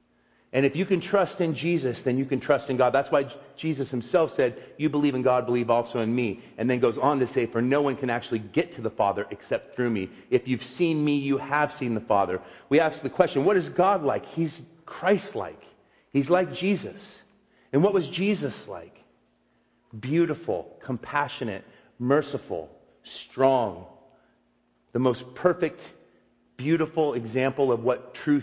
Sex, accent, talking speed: male, American, 175 wpm